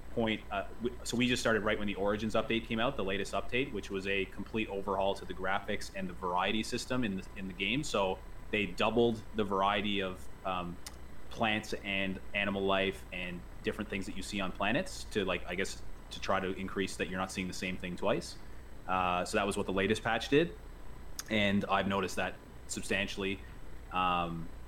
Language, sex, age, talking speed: English, male, 30-49, 195 wpm